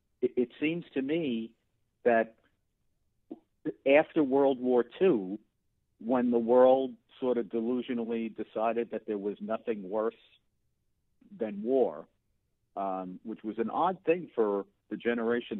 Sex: male